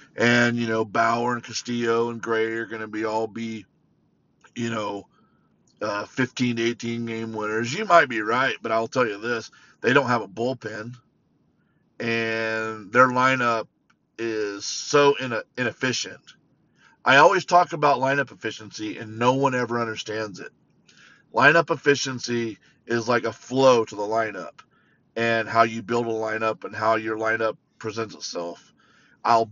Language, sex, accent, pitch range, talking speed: English, male, American, 110-120 Hz, 155 wpm